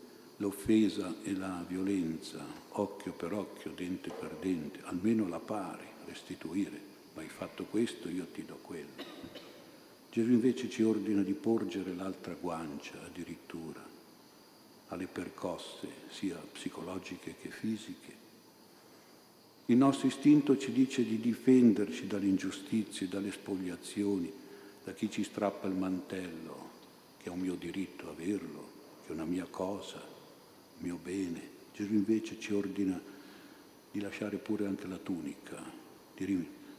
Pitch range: 95-110 Hz